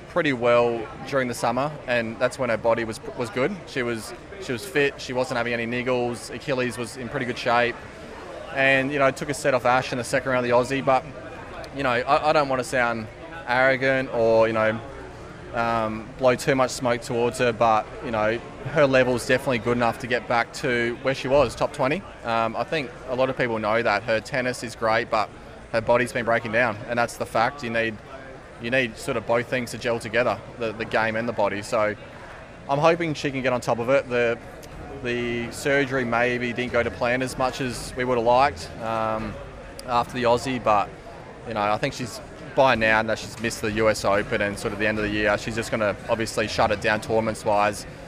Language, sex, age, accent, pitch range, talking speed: English, male, 20-39, Australian, 115-130 Hz, 225 wpm